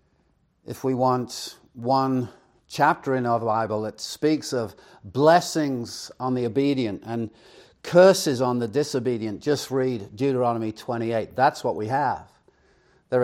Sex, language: male, English